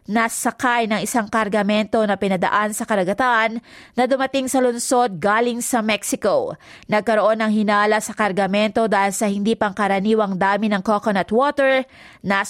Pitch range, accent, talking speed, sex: 205-245 Hz, Filipino, 145 wpm, female